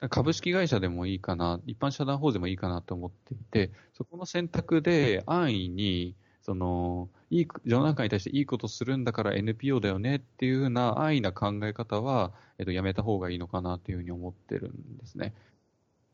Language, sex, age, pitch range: Japanese, male, 20-39, 95-130 Hz